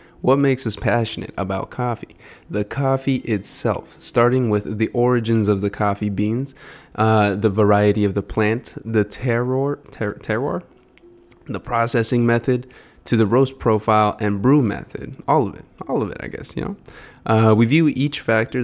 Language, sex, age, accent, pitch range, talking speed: English, male, 20-39, American, 105-120 Hz, 160 wpm